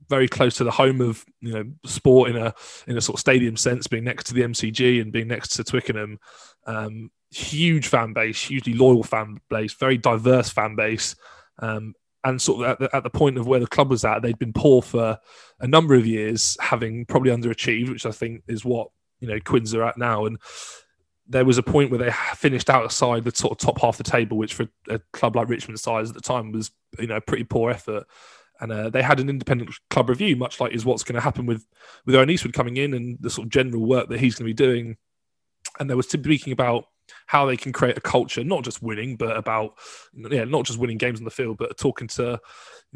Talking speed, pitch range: 240 wpm, 115-130 Hz